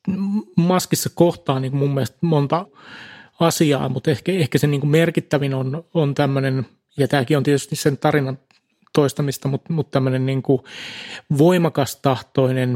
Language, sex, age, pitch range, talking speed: Finnish, male, 30-49, 135-160 Hz, 135 wpm